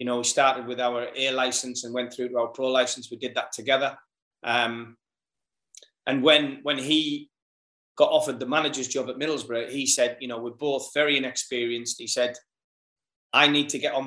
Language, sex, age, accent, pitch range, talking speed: English, male, 20-39, British, 125-140 Hz, 195 wpm